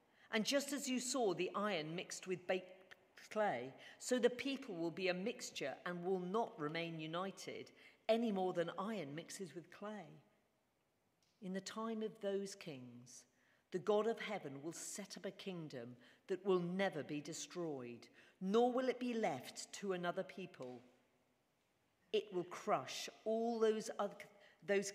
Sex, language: female, English